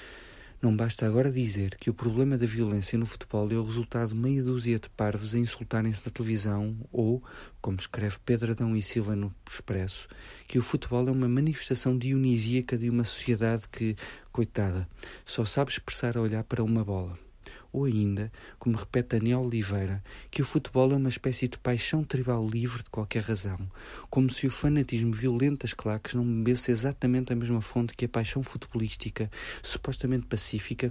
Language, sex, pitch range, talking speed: Portuguese, male, 110-130 Hz, 175 wpm